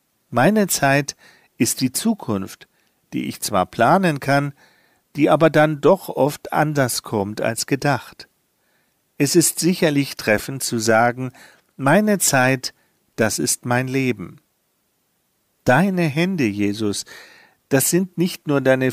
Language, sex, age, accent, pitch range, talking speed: German, male, 50-69, German, 115-155 Hz, 125 wpm